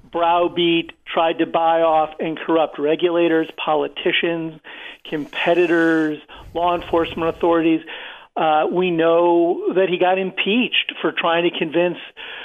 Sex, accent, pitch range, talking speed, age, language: male, American, 160-185 Hz, 115 wpm, 50-69, English